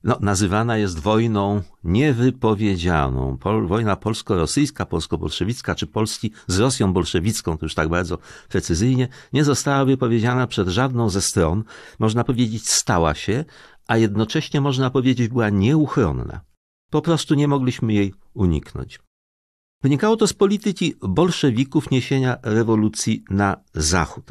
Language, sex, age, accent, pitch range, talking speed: Polish, male, 50-69, native, 95-135 Hz, 120 wpm